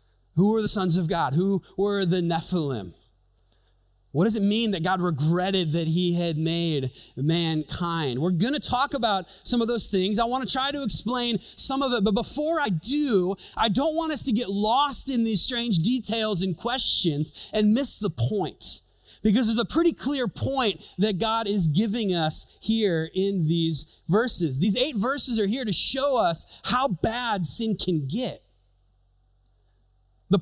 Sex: male